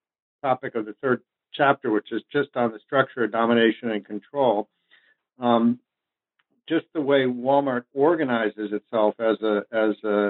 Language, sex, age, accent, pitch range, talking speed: English, male, 60-79, American, 110-130 Hz, 150 wpm